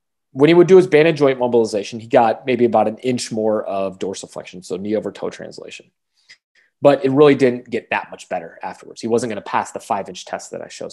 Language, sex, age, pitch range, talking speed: English, male, 20-39, 115-145 Hz, 230 wpm